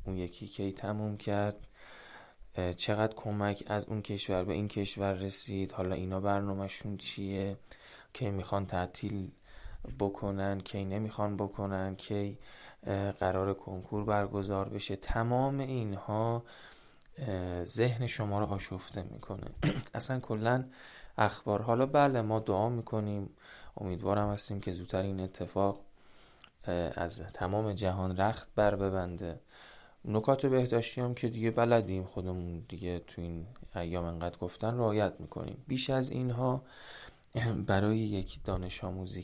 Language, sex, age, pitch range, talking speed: Persian, male, 20-39, 95-110 Hz, 120 wpm